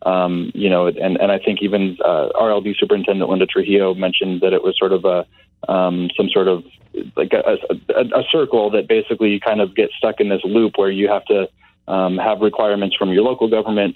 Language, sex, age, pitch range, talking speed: English, male, 30-49, 95-115 Hz, 215 wpm